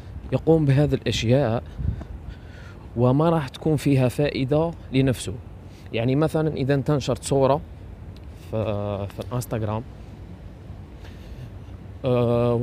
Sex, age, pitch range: male, 20-39, 95-140 Hz